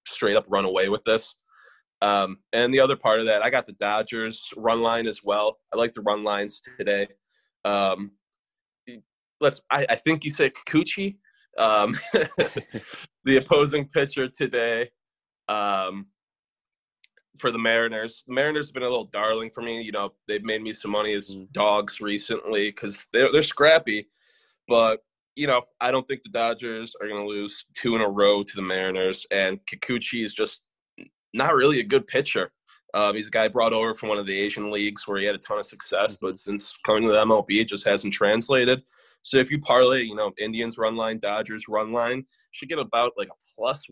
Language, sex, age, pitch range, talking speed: English, male, 20-39, 105-120 Hz, 195 wpm